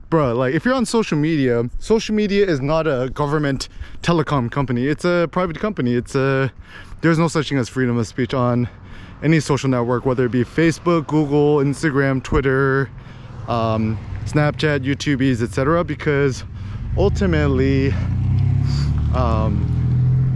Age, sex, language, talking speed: 20-39, male, English, 140 wpm